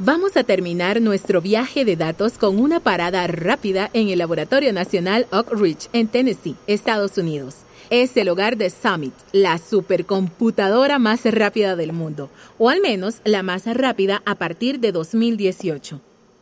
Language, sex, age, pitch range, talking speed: Spanish, female, 30-49, 175-240 Hz, 155 wpm